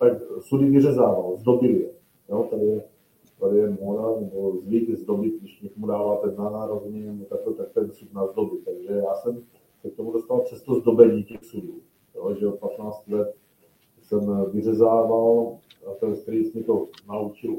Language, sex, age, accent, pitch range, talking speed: Czech, male, 40-59, native, 105-145 Hz, 165 wpm